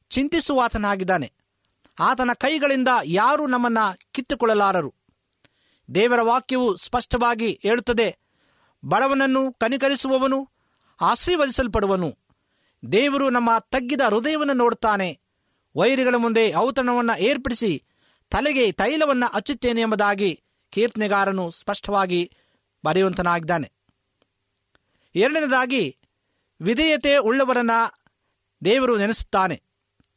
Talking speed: 70 wpm